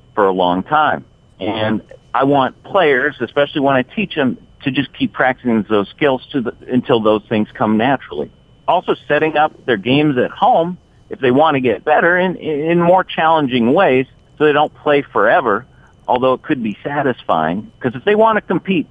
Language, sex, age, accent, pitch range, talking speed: English, male, 50-69, American, 115-155 Hz, 190 wpm